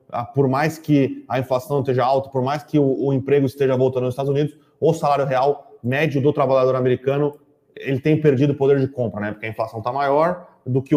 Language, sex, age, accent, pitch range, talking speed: Portuguese, male, 20-39, Brazilian, 125-150 Hz, 215 wpm